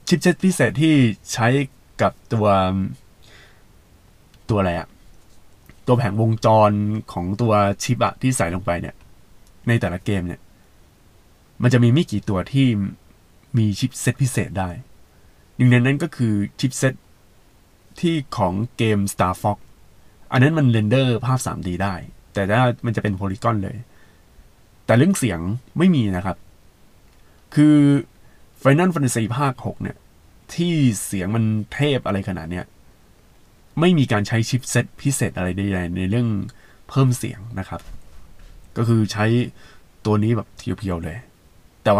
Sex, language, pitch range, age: male, Thai, 95-125 Hz, 20-39